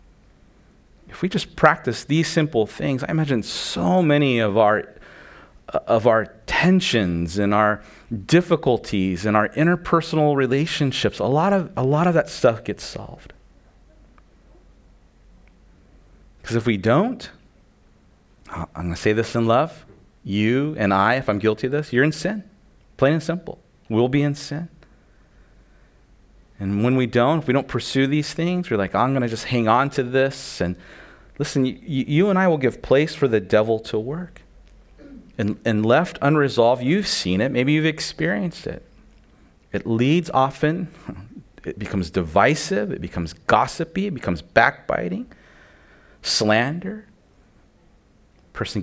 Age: 30-49